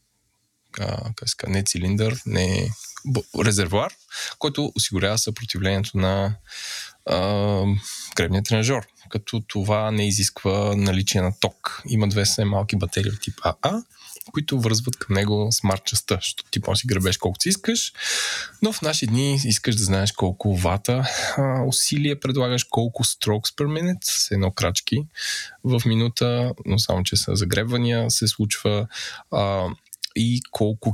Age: 20-39